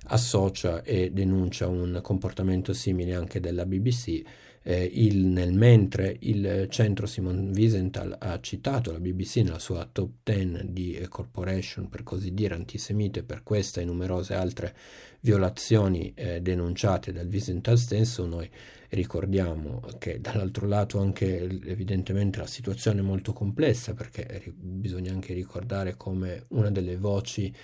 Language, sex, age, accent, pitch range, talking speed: Italian, male, 50-69, native, 90-110 Hz, 135 wpm